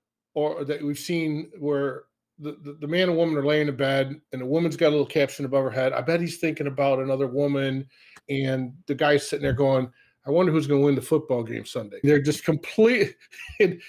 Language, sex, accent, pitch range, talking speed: English, male, American, 130-165 Hz, 220 wpm